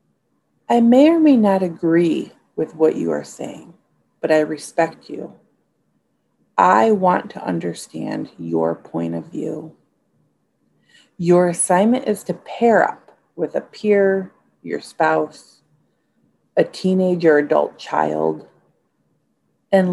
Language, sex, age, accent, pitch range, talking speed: English, female, 40-59, American, 155-205 Hz, 115 wpm